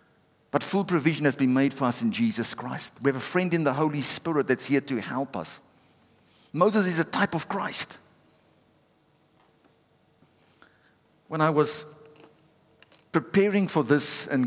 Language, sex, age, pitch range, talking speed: English, male, 50-69, 145-180 Hz, 155 wpm